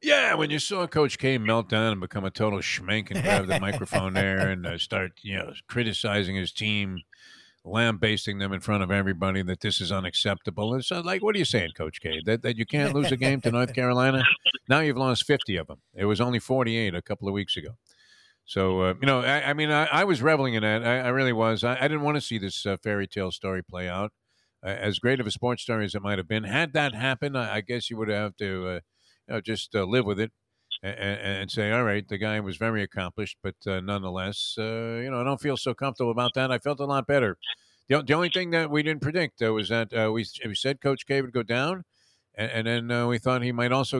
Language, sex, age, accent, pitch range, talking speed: English, male, 50-69, American, 100-140 Hz, 250 wpm